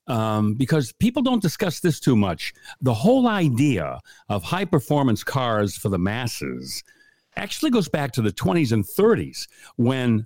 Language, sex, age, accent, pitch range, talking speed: English, male, 60-79, American, 100-135 Hz, 150 wpm